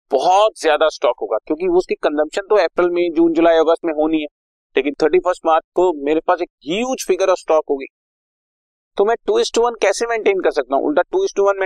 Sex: male